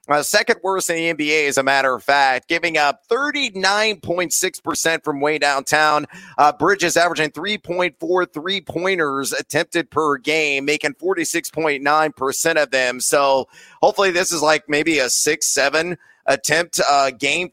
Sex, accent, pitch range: male, American, 140-180 Hz